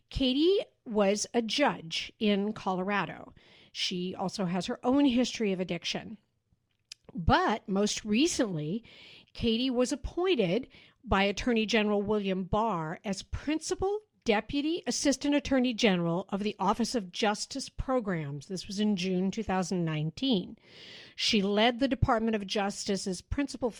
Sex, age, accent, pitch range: female, 50-69, American, 185-240 Hz